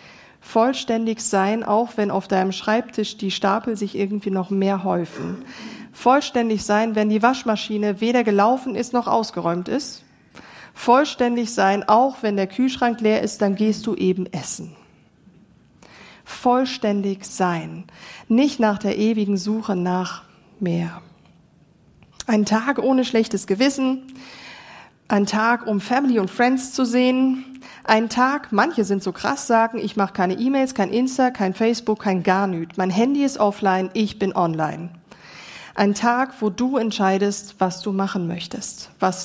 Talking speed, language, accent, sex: 145 wpm, German, German, female